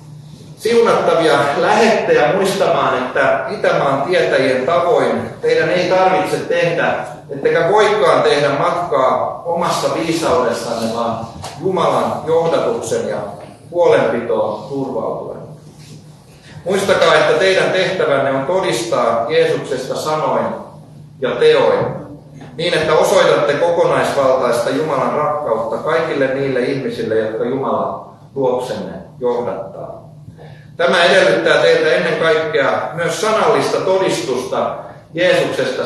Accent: native